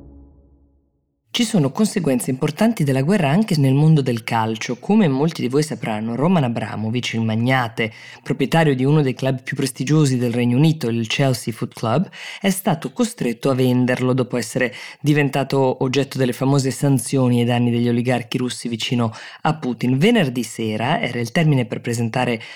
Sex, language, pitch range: female, Italian, 120-155 Hz